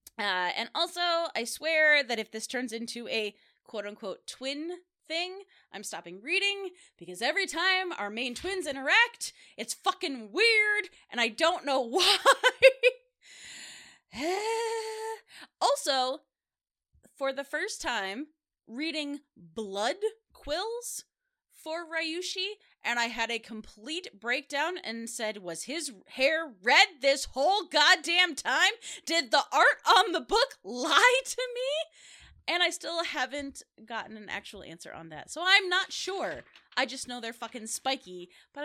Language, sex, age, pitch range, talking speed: English, female, 20-39, 215-350 Hz, 135 wpm